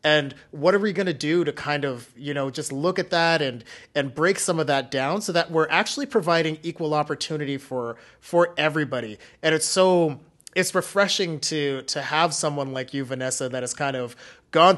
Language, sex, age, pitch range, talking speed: English, male, 30-49, 140-175 Hz, 205 wpm